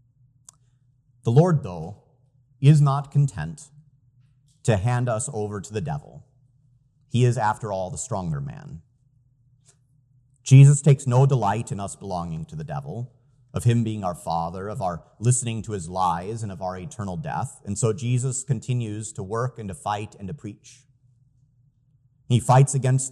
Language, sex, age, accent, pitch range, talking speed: English, male, 30-49, American, 115-140 Hz, 160 wpm